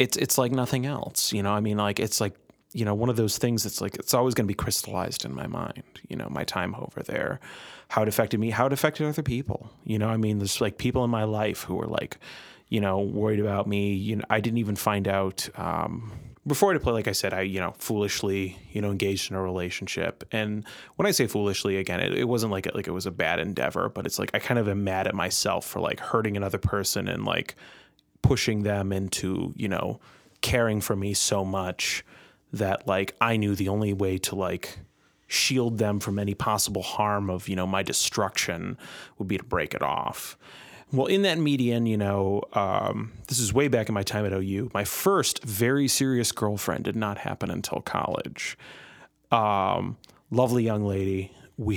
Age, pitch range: 30-49, 100-115 Hz